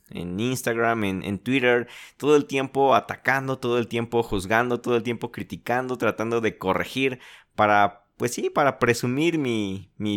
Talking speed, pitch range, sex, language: 160 wpm, 105-125 Hz, male, Spanish